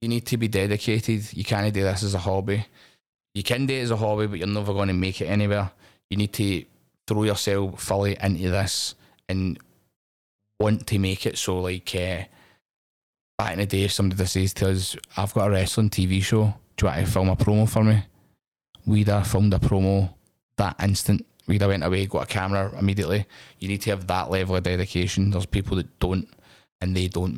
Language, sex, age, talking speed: English, male, 20-39, 215 wpm